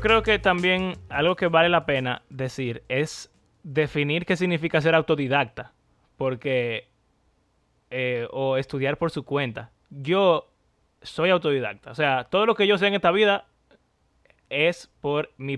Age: 20-39